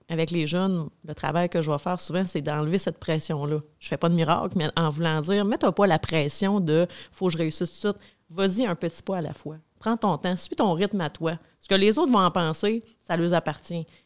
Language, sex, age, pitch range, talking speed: French, female, 30-49, 160-205 Hz, 260 wpm